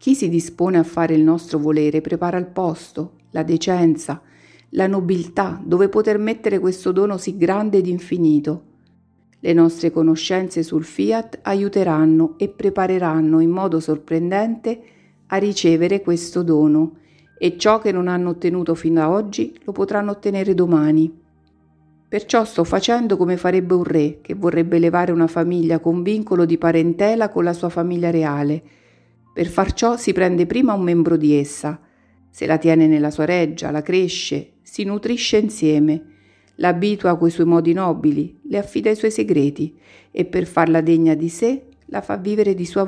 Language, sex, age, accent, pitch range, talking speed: Italian, female, 50-69, native, 155-190 Hz, 160 wpm